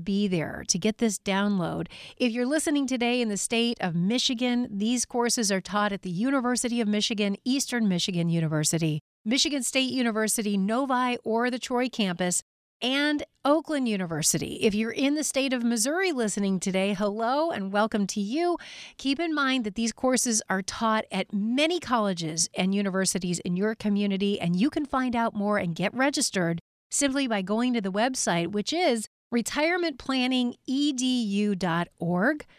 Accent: American